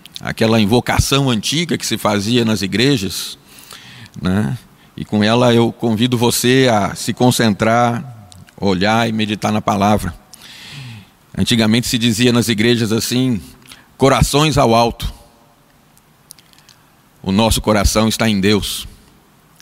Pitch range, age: 100-120 Hz, 50-69